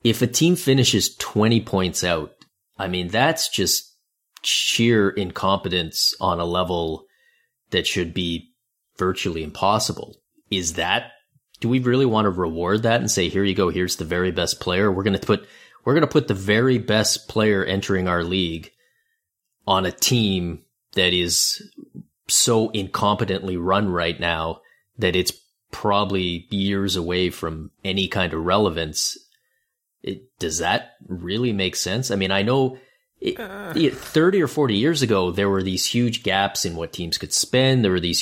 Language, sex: English, male